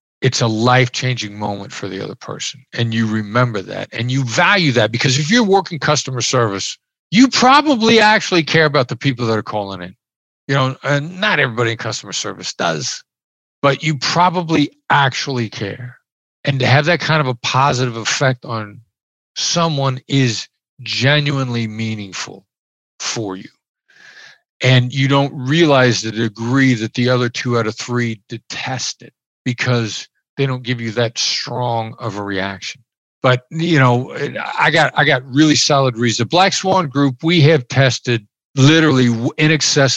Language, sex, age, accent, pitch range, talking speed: English, male, 50-69, American, 115-140 Hz, 160 wpm